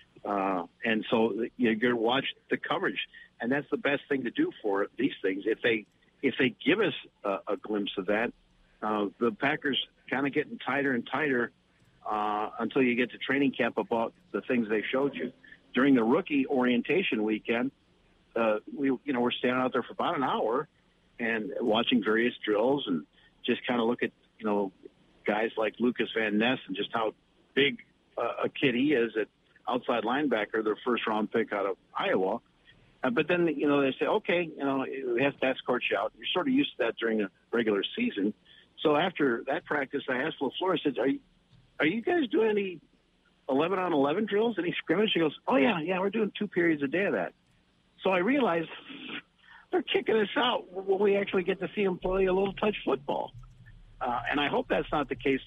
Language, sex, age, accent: English, male, 50-69, American